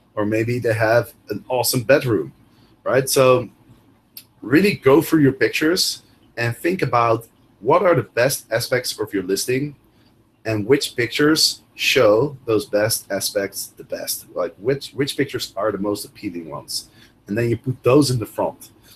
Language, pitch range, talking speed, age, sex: English, 110-135 Hz, 160 wpm, 30-49, male